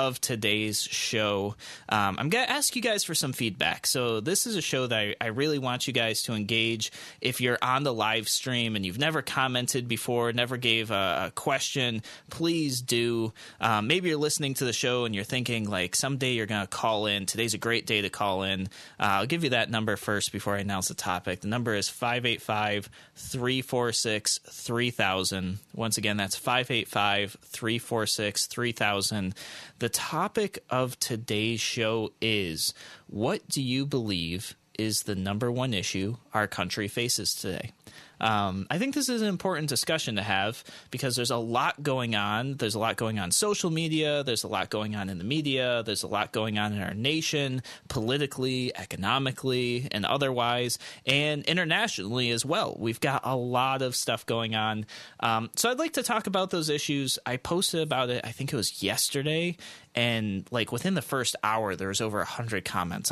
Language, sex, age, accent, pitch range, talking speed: English, male, 20-39, American, 105-135 Hz, 185 wpm